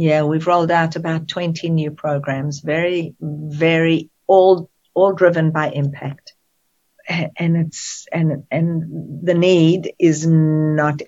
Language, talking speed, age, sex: English, 125 wpm, 50-69, female